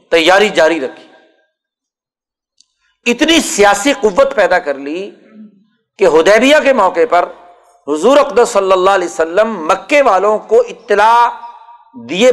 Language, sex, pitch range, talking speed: Urdu, male, 185-275 Hz, 120 wpm